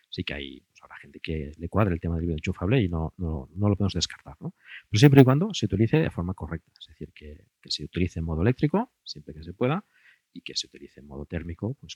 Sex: male